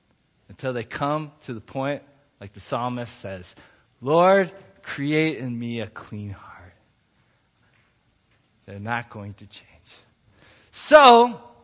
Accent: American